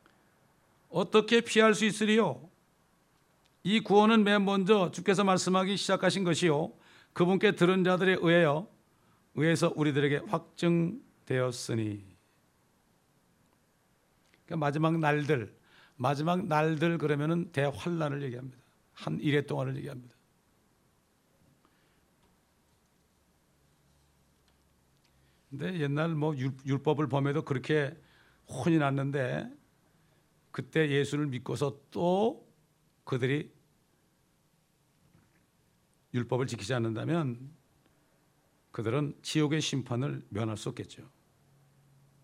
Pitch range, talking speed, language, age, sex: 130-175 Hz, 75 wpm, English, 60-79, male